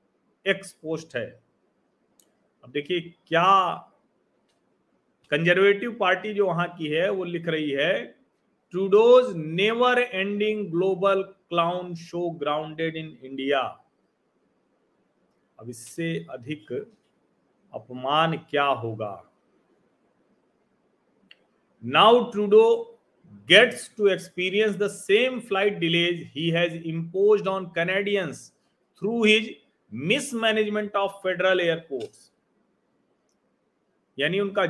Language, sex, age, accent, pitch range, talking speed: Hindi, male, 40-59, native, 155-205 Hz, 90 wpm